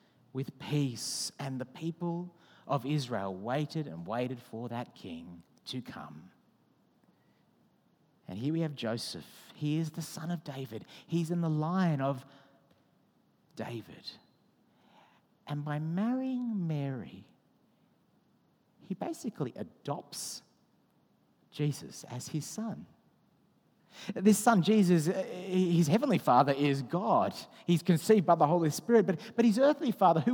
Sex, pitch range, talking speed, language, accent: male, 135-200 Hz, 125 wpm, English, Australian